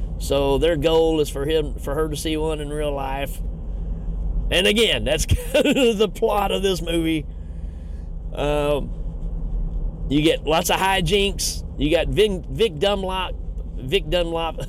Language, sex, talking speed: English, male, 150 wpm